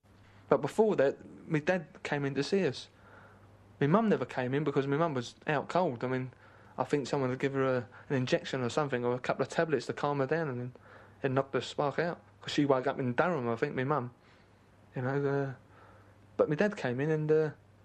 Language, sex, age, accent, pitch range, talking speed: English, male, 30-49, British, 115-145 Hz, 225 wpm